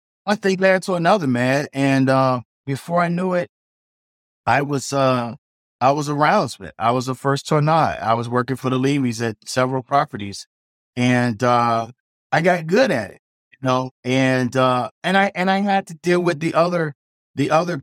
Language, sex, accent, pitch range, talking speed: English, male, American, 110-130 Hz, 190 wpm